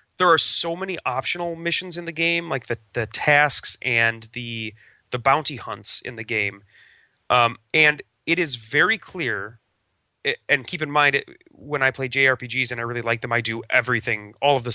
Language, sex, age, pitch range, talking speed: English, male, 30-49, 120-170 Hz, 185 wpm